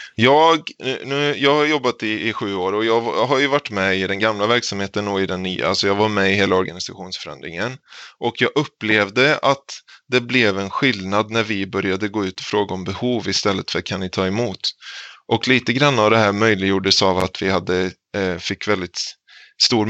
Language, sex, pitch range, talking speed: Swedish, male, 95-115 Hz, 195 wpm